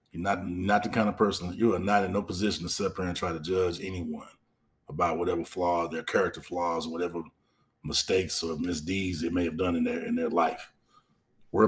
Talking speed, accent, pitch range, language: 210 wpm, American, 90-125 Hz, English